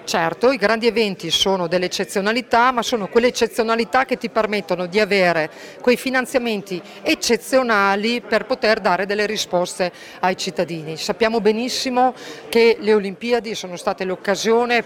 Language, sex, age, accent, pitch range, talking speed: Italian, female, 40-59, native, 185-230 Hz, 135 wpm